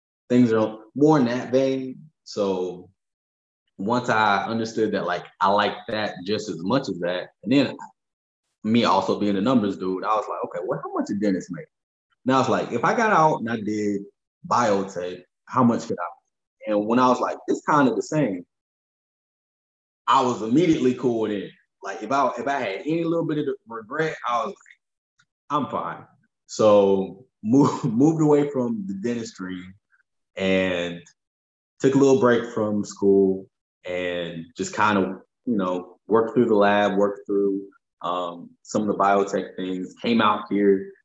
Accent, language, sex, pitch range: American, English, male, 95-120 Hz